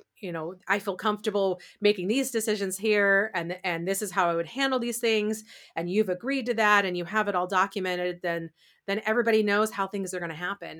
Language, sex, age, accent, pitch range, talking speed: English, female, 30-49, American, 160-195 Hz, 220 wpm